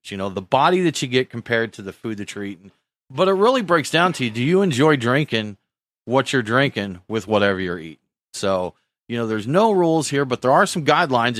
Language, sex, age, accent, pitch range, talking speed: English, male, 40-59, American, 110-145 Hz, 230 wpm